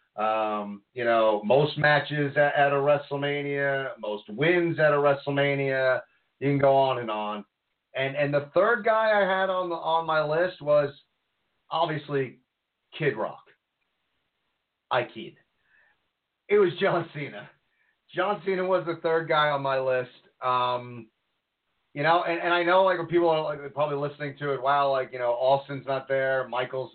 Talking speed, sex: 165 wpm, male